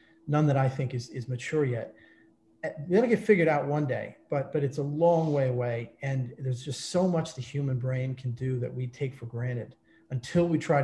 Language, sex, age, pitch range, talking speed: English, male, 40-59, 130-155 Hz, 225 wpm